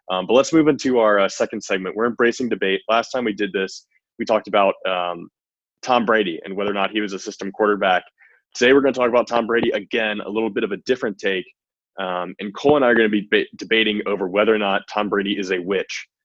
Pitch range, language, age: 95-105 Hz, English, 20-39